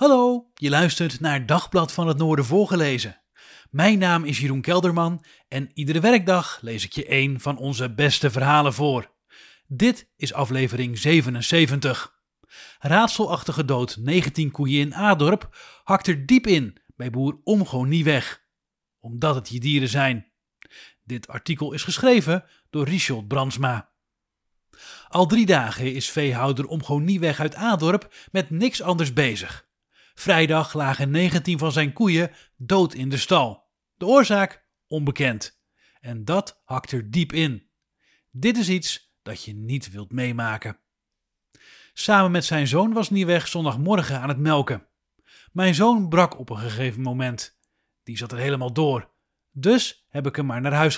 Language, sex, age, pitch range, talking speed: English, male, 30-49, 130-180 Hz, 150 wpm